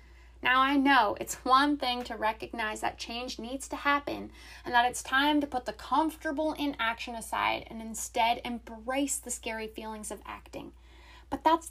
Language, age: English, 20-39